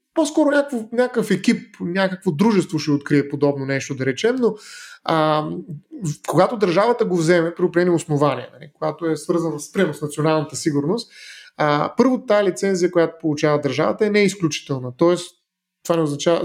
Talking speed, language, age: 155 wpm, Bulgarian, 30-49